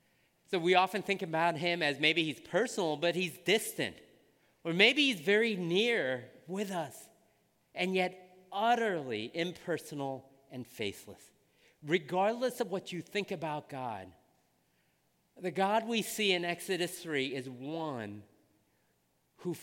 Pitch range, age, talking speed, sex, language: 125-175 Hz, 50-69, 130 wpm, male, English